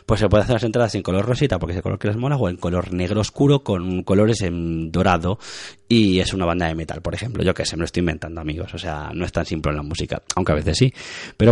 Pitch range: 95-130 Hz